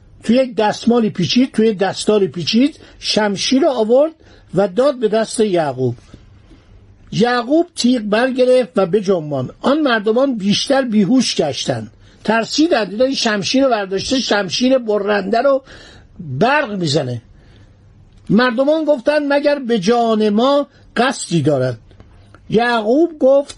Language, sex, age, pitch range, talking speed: Persian, male, 50-69, 180-255 Hz, 115 wpm